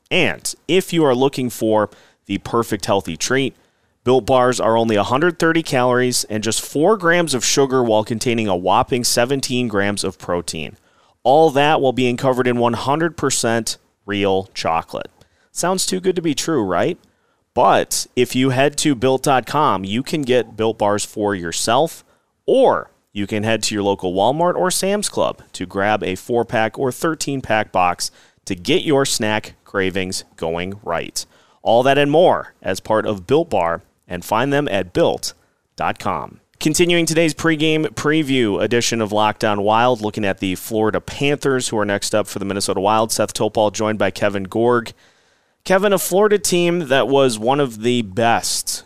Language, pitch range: English, 105-135 Hz